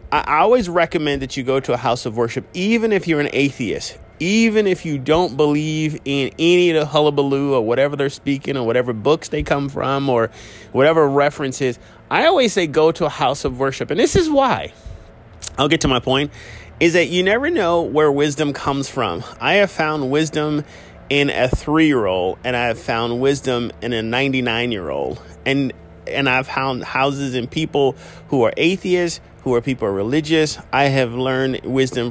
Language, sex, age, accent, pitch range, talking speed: English, male, 30-49, American, 120-155 Hz, 195 wpm